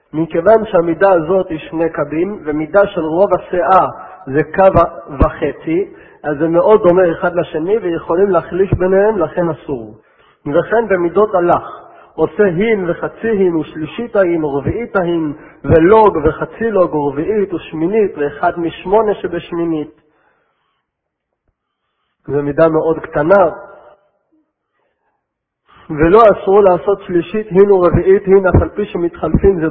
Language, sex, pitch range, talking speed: Hebrew, male, 160-205 Hz, 120 wpm